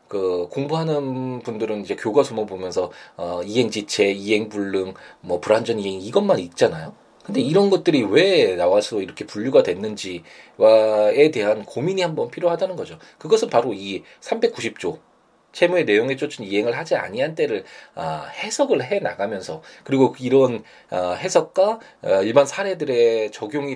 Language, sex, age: Korean, male, 20-39